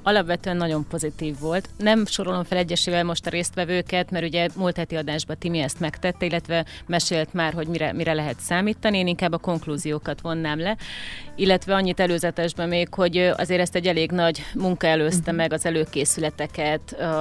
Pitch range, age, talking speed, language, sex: 160-185 Hz, 30-49, 165 wpm, Hungarian, female